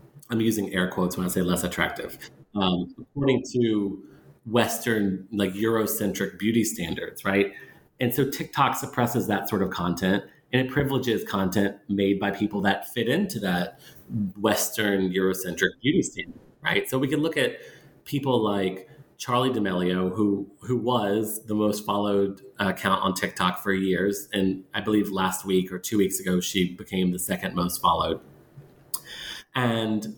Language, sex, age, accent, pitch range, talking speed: English, male, 30-49, American, 95-115 Hz, 155 wpm